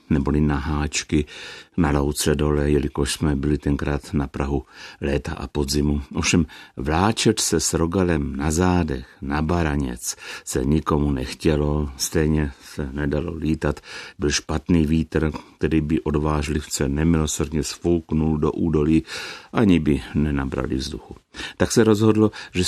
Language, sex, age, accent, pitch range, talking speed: Czech, male, 60-79, native, 75-85 Hz, 130 wpm